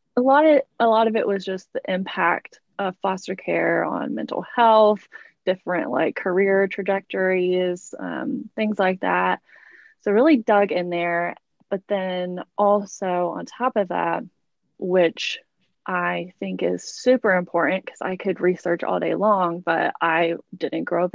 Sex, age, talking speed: female, 20-39, 155 wpm